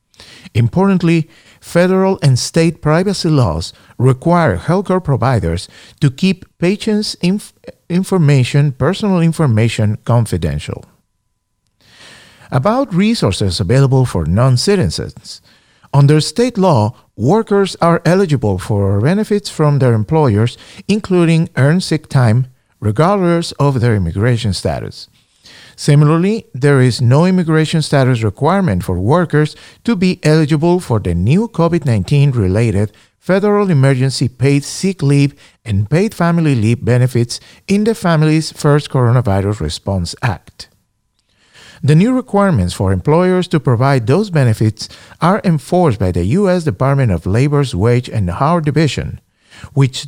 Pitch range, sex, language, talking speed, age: 115-175 Hz, male, English, 115 wpm, 50-69